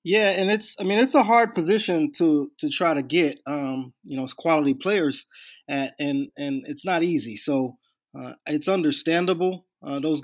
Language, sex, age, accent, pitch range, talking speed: English, male, 20-39, American, 135-175 Hz, 180 wpm